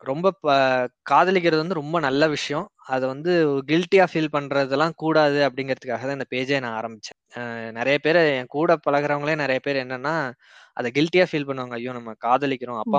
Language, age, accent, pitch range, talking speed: Tamil, 20-39, native, 125-155 Hz, 150 wpm